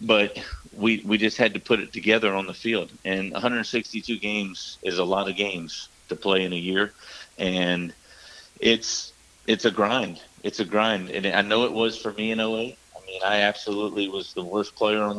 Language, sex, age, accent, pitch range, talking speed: English, male, 30-49, American, 95-105 Hz, 200 wpm